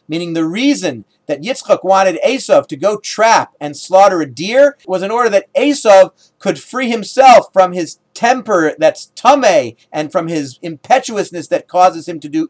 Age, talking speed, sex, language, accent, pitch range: 40-59, 175 wpm, male, English, American, 165-240 Hz